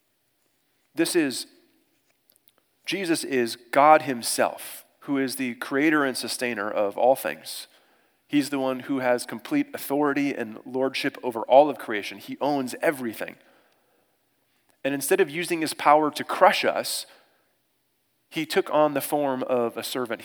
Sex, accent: male, American